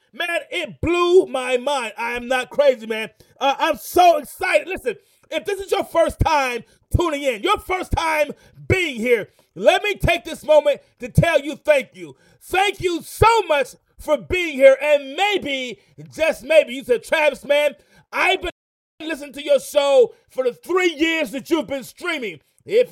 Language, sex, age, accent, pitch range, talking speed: English, male, 40-59, American, 270-360 Hz, 180 wpm